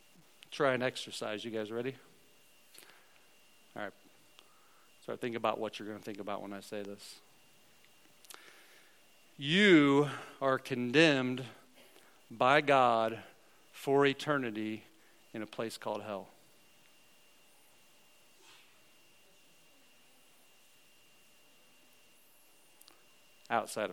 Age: 40-59